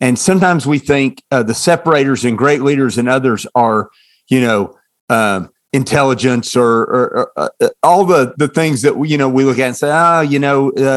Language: English